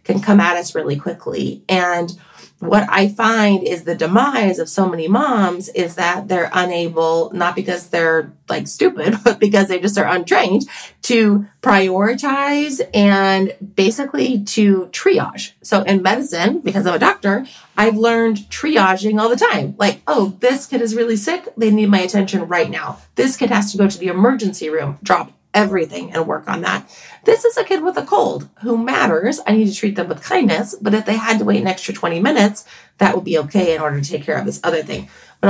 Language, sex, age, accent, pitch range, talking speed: English, female, 30-49, American, 175-225 Hz, 200 wpm